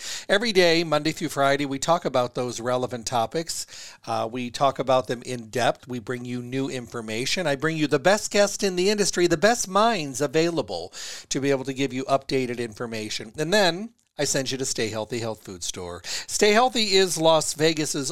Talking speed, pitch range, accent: 200 wpm, 125-165 Hz, American